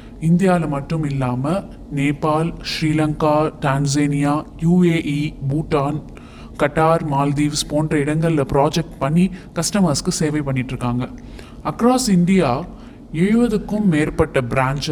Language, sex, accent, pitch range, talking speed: Tamil, male, native, 140-175 Hz, 90 wpm